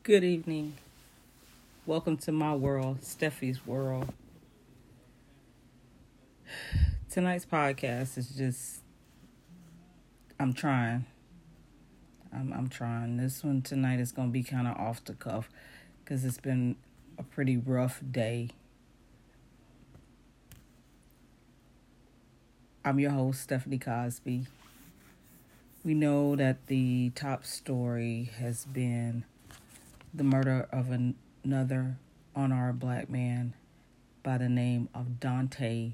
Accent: American